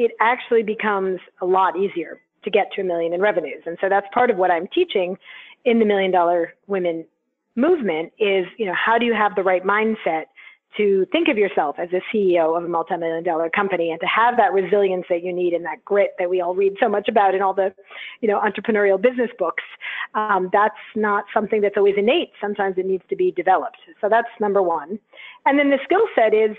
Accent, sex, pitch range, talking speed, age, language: American, female, 185-230 Hz, 220 wpm, 40-59, English